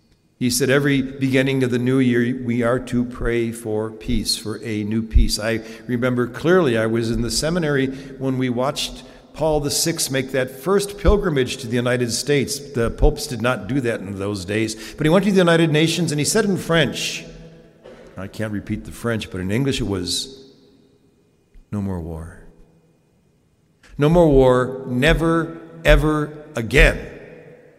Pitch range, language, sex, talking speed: 95-130 Hz, English, male, 170 wpm